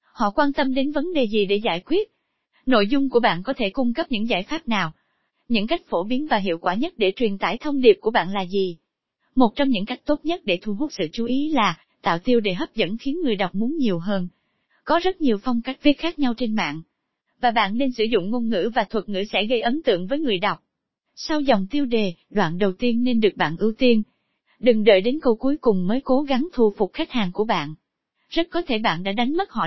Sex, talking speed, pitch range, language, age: female, 255 wpm, 205-280 Hz, Vietnamese, 20-39